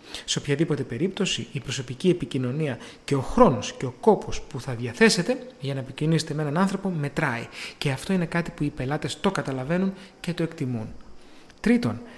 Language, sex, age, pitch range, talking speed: Greek, male, 30-49, 140-195 Hz, 175 wpm